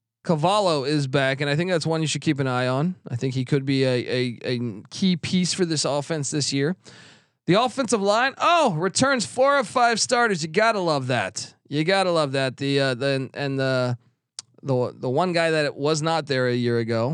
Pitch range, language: 125-170 Hz, English